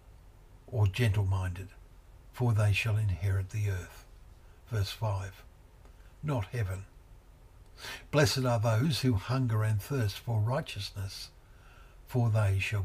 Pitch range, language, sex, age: 95-120 Hz, English, male, 60-79